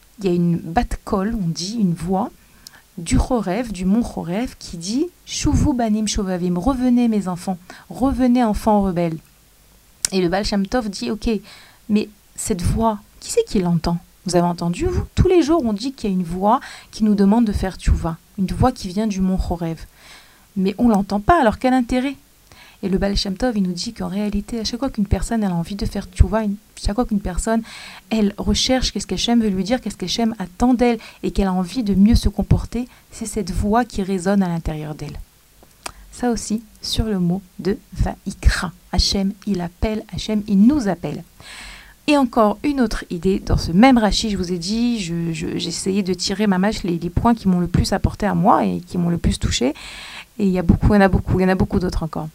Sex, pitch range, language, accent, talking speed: female, 185-230 Hz, French, French, 225 wpm